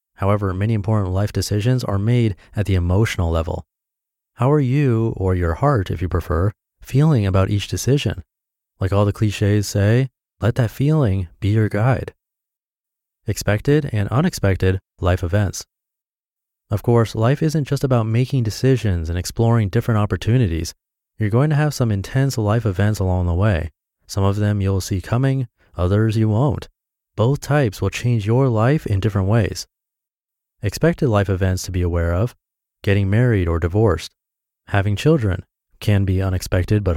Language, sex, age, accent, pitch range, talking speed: English, male, 30-49, American, 95-120 Hz, 160 wpm